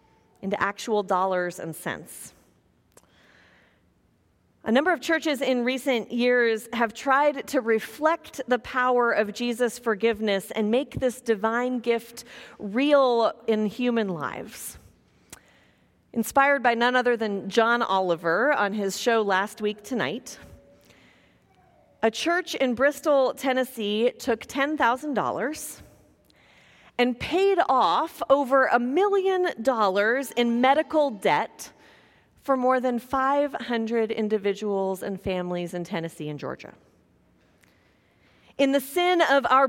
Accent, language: American, English